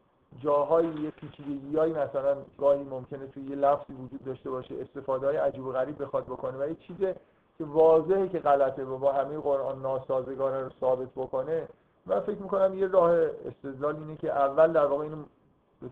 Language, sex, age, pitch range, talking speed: Persian, male, 50-69, 135-160 Hz, 180 wpm